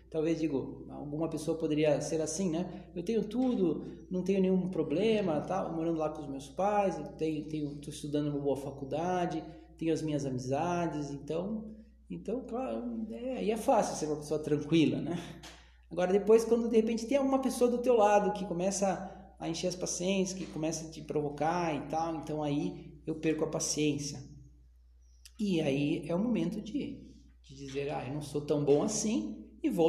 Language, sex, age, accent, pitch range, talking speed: Portuguese, male, 20-39, Brazilian, 145-190 Hz, 185 wpm